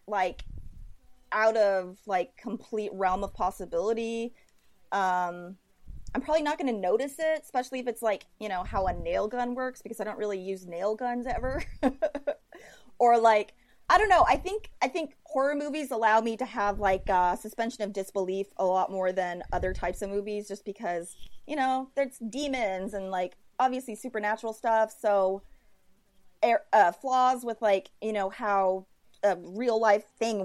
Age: 30-49